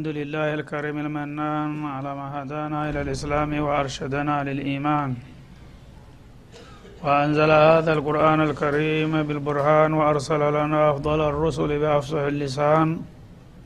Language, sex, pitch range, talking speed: Amharic, male, 150-155 Hz, 100 wpm